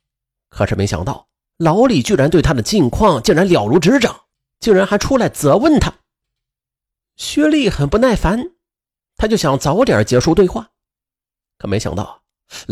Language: Chinese